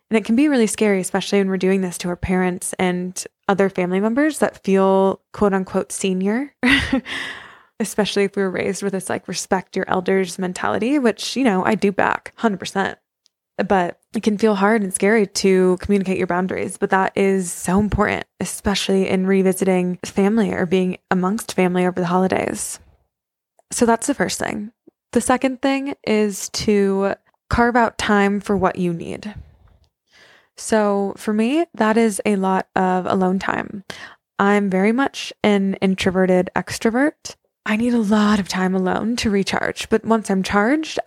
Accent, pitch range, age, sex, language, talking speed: American, 190-220 Hz, 20-39, female, English, 170 wpm